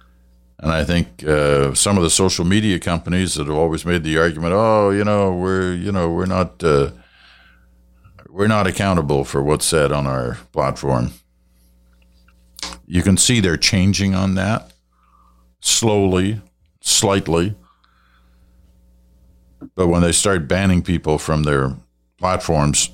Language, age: English, 60-79